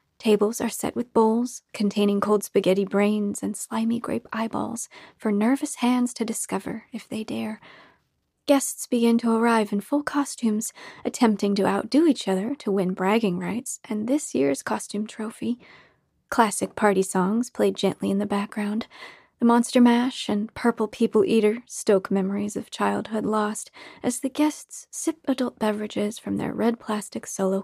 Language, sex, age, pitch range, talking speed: English, female, 30-49, 205-245 Hz, 160 wpm